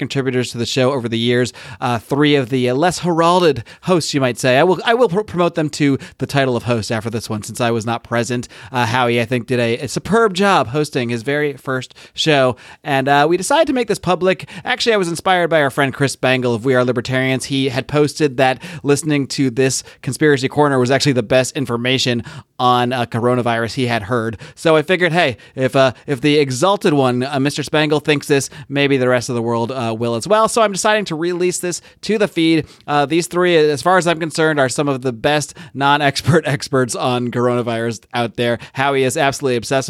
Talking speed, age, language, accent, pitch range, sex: 225 wpm, 30-49, English, American, 125-160 Hz, male